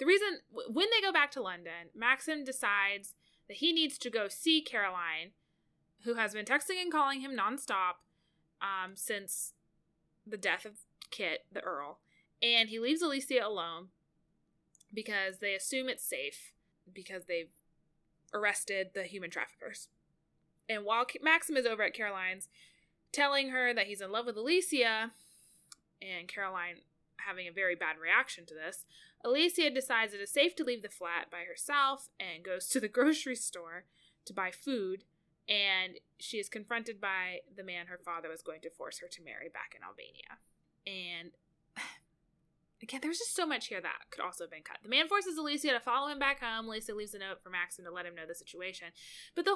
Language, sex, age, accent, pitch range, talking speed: English, female, 20-39, American, 180-275 Hz, 180 wpm